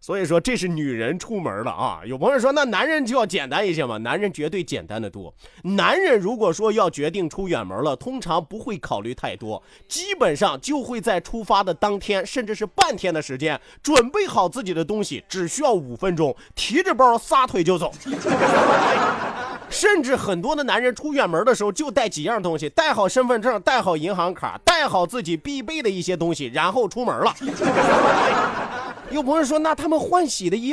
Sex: male